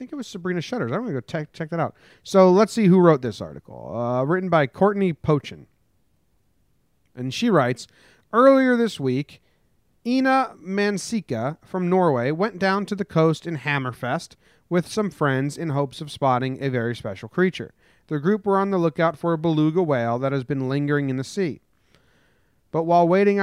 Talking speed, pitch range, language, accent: 190 wpm, 130-180 Hz, English, American